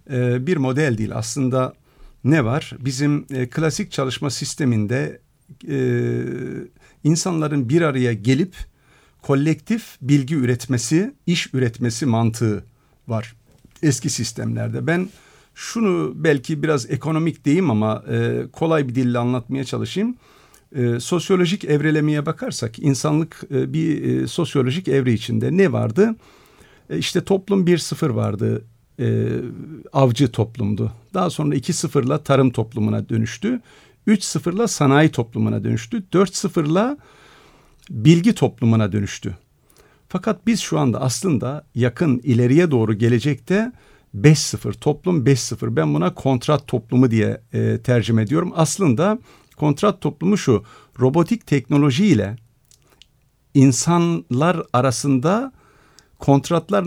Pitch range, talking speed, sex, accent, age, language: 120-165 Hz, 100 wpm, male, native, 50-69, Turkish